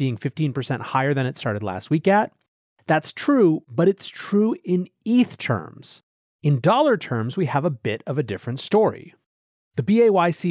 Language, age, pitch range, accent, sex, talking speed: English, 30-49, 125-165 Hz, American, male, 170 wpm